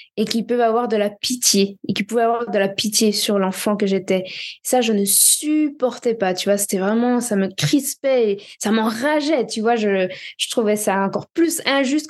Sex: female